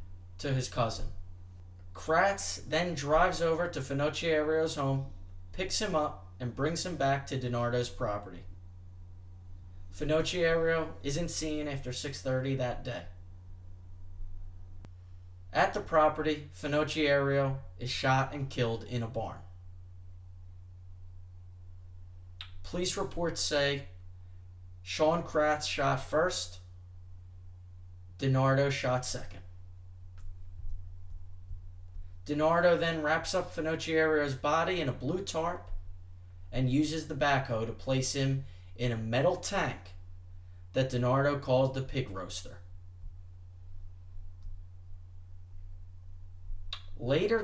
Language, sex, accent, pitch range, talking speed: English, male, American, 90-140 Hz, 95 wpm